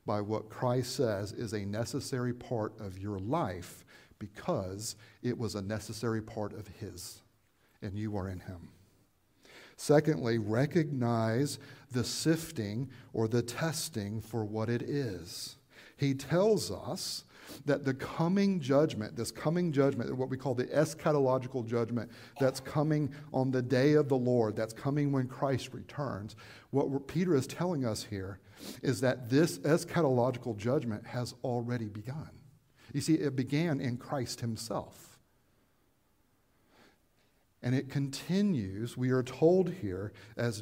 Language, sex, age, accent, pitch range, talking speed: English, male, 50-69, American, 110-140 Hz, 135 wpm